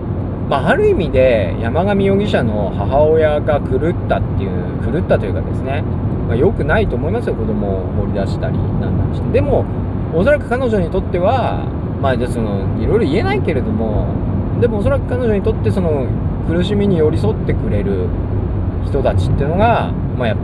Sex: male